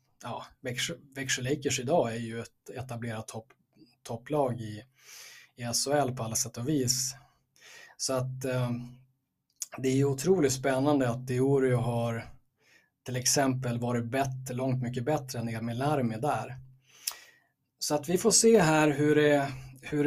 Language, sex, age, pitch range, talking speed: Swedish, male, 20-39, 120-135 Hz, 145 wpm